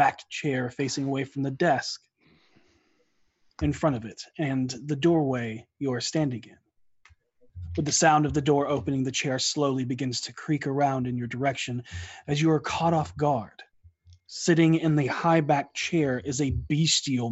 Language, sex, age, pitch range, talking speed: English, male, 20-39, 125-150 Hz, 175 wpm